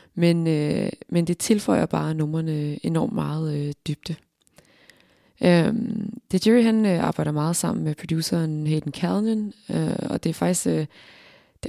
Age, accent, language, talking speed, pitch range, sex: 20-39, native, Danish, 155 wpm, 150-185 Hz, female